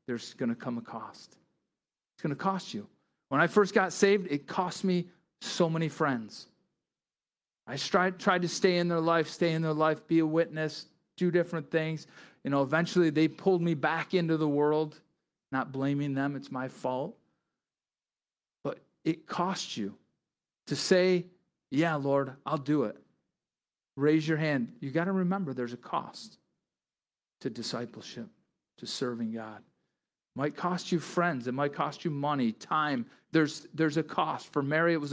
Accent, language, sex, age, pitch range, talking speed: American, English, male, 40-59, 140-175 Hz, 170 wpm